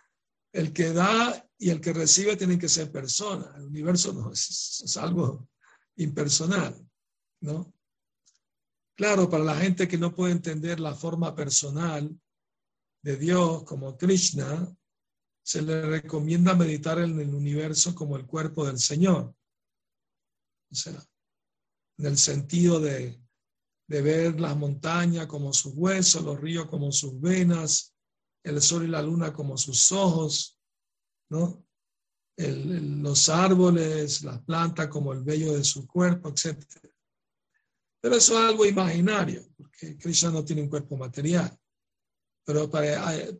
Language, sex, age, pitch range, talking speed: Spanish, male, 60-79, 150-175 Hz, 140 wpm